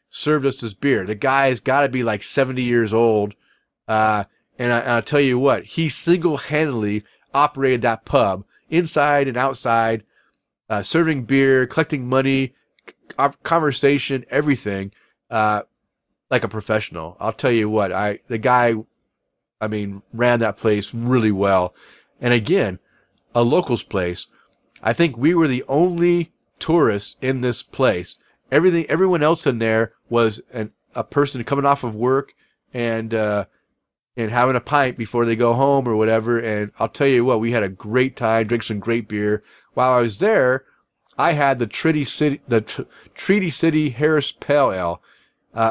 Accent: American